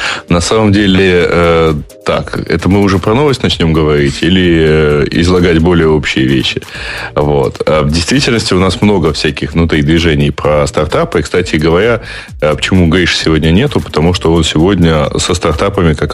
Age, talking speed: 20-39, 150 wpm